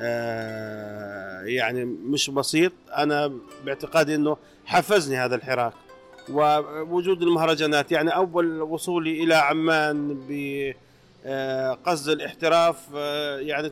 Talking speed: 85 wpm